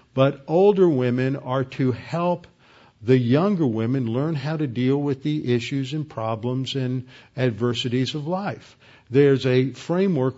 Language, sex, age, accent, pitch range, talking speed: English, male, 50-69, American, 120-140 Hz, 145 wpm